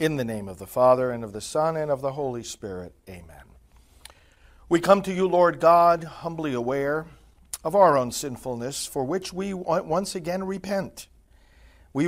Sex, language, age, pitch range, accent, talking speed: male, English, 60-79, 110-170 Hz, American, 175 wpm